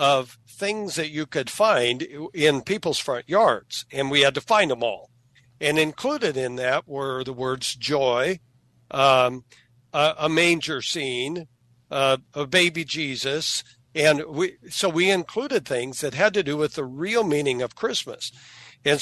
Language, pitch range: English, 130-165 Hz